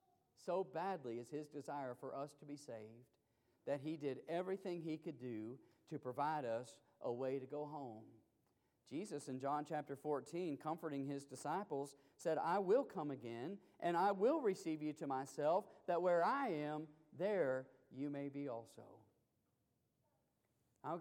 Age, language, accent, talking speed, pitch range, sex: 40-59, English, American, 155 wpm, 130-195 Hz, male